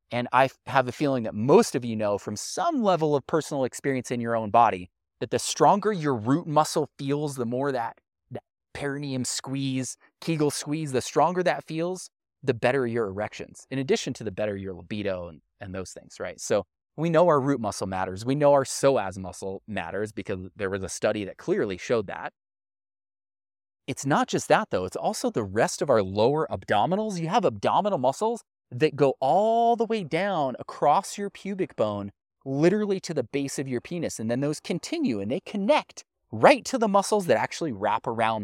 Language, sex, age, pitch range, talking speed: English, male, 30-49, 105-150 Hz, 195 wpm